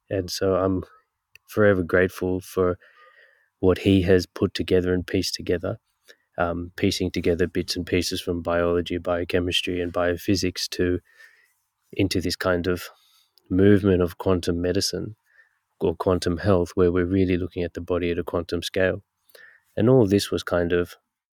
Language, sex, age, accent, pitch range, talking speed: English, male, 20-39, Australian, 90-95 Hz, 150 wpm